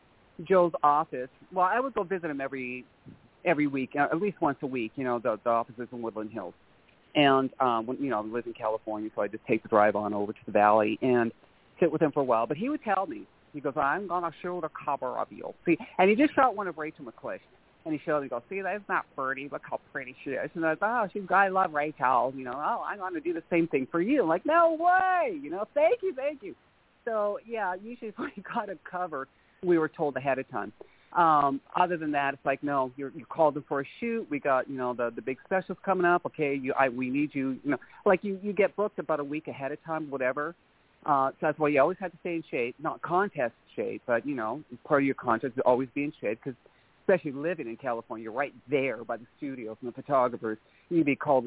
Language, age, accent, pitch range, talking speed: English, 30-49, American, 130-180 Hz, 260 wpm